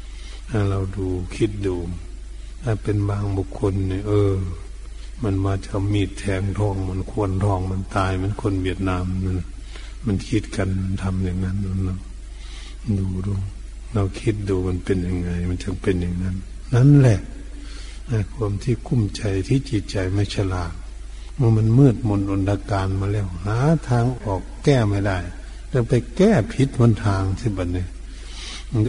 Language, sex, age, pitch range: Thai, male, 60-79, 90-105 Hz